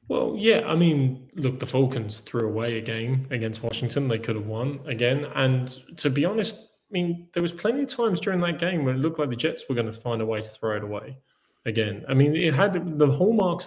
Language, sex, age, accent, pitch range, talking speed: English, male, 20-39, British, 120-150 Hz, 240 wpm